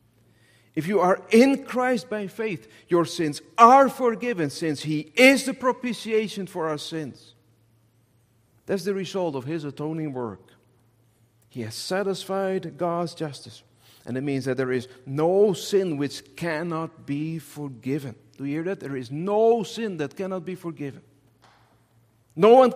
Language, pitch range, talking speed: English, 115-165 Hz, 150 wpm